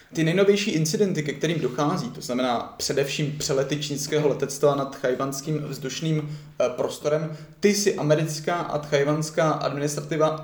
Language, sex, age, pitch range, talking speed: Czech, male, 20-39, 135-155 Hz, 125 wpm